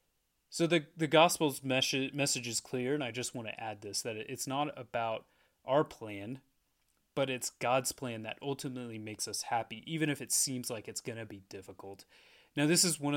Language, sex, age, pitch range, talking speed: English, male, 30-49, 110-135 Hz, 195 wpm